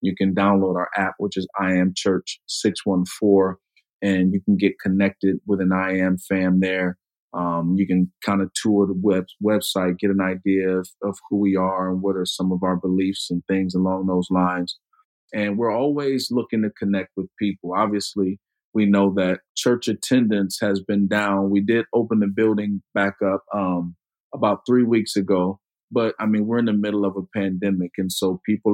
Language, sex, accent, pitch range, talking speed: English, male, American, 95-105 Hz, 190 wpm